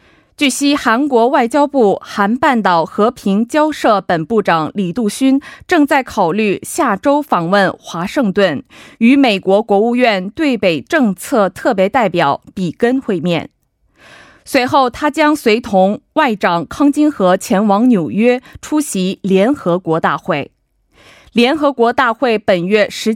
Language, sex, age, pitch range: Korean, female, 20-39, 190-275 Hz